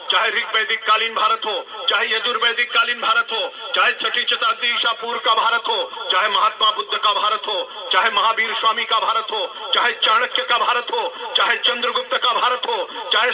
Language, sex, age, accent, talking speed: Hindi, male, 50-69, native, 175 wpm